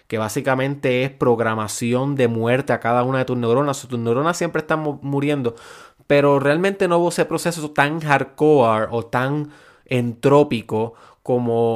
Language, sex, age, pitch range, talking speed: Spanish, male, 20-39, 120-155 Hz, 160 wpm